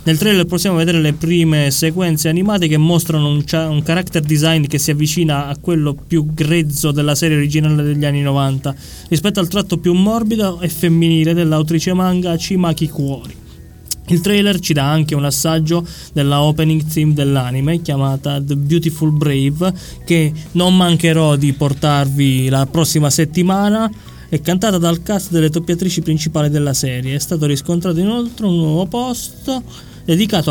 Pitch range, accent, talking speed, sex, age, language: 145-170 Hz, native, 150 wpm, male, 20-39, Italian